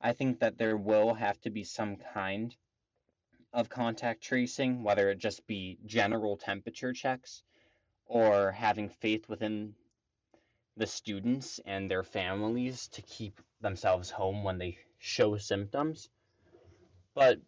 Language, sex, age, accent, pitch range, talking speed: English, male, 20-39, American, 100-125 Hz, 130 wpm